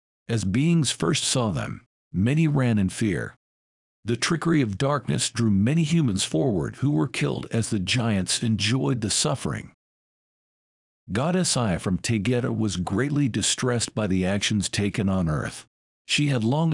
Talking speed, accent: 150 wpm, American